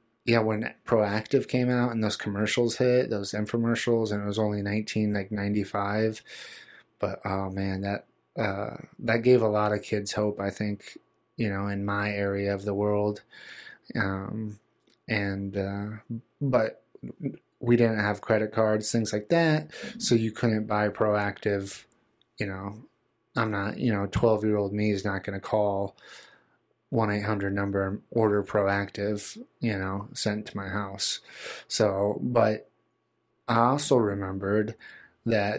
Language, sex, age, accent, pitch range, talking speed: English, male, 20-39, American, 100-115 Hz, 150 wpm